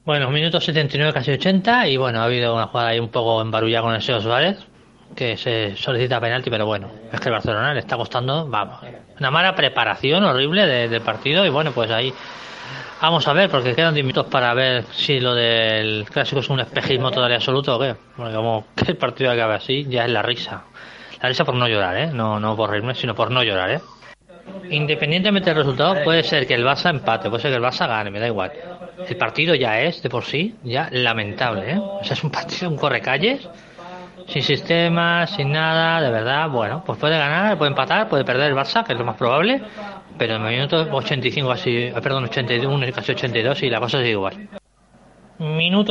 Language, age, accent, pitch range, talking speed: Spanish, 20-39, Spanish, 120-160 Hz, 215 wpm